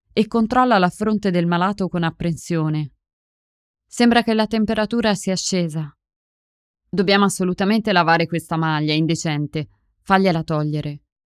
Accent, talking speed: native, 115 wpm